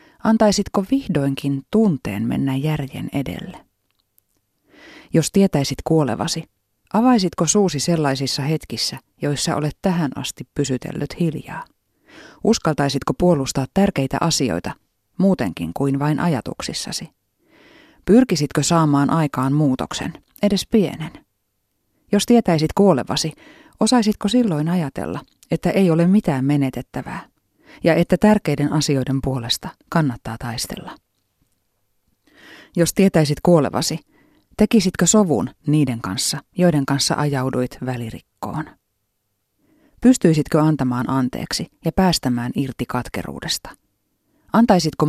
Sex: female